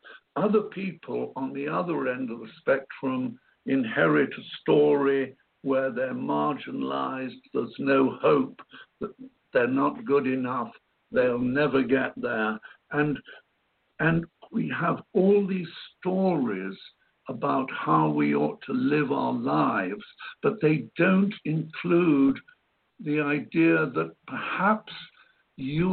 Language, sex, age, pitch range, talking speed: English, male, 60-79, 135-190 Hz, 120 wpm